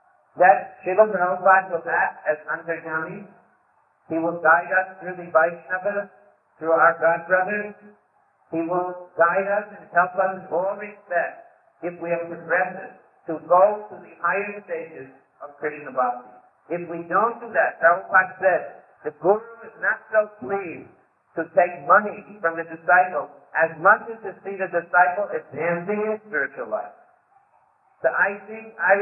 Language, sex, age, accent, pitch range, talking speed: English, male, 50-69, American, 165-200 Hz, 155 wpm